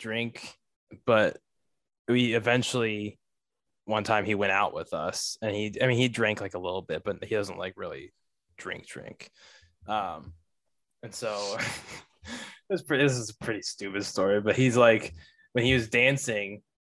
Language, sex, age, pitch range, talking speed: English, male, 10-29, 110-130 Hz, 155 wpm